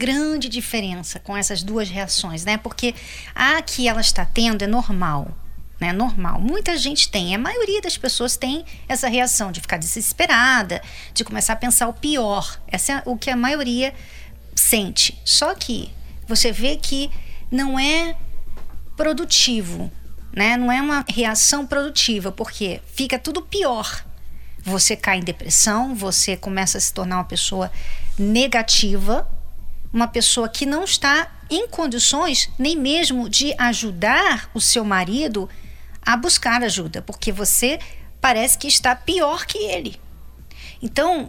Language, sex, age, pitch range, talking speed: Portuguese, female, 40-59, 210-270 Hz, 145 wpm